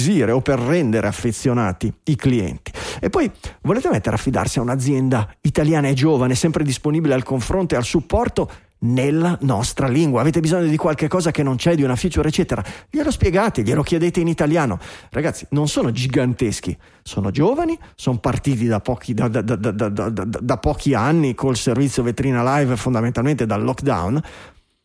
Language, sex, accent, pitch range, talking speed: Italian, male, native, 120-170 Hz, 170 wpm